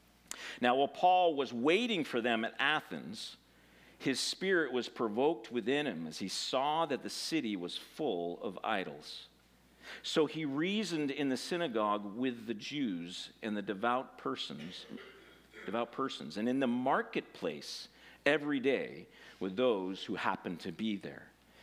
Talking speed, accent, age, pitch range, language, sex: 145 wpm, American, 50-69, 145-210 Hz, English, male